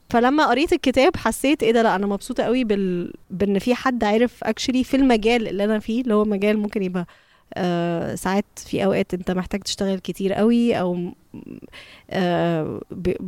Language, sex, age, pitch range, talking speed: Arabic, female, 20-39, 195-245 Hz, 160 wpm